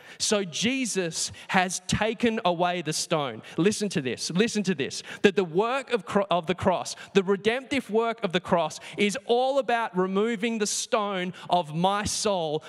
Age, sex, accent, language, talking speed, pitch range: 20-39, male, Australian, English, 170 wpm, 180-225 Hz